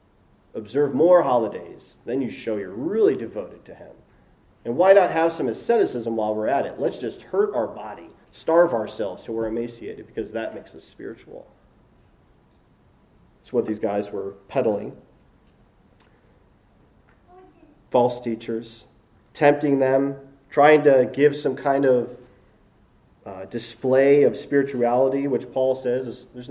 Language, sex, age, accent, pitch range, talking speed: English, male, 30-49, American, 110-145 Hz, 140 wpm